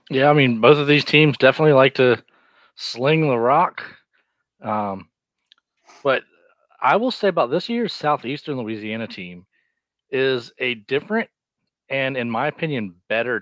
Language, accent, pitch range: English, American, 105-130 Hz